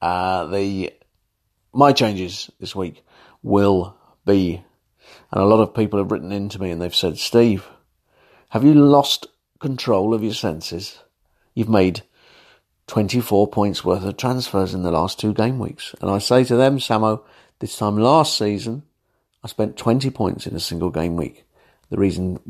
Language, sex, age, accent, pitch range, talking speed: English, male, 50-69, British, 95-115 Hz, 170 wpm